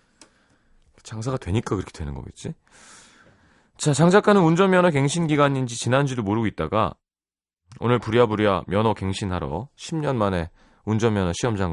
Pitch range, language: 85-135 Hz, Korean